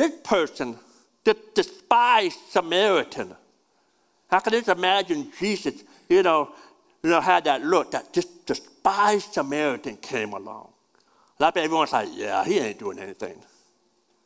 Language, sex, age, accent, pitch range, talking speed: English, male, 60-79, American, 140-215 Hz, 125 wpm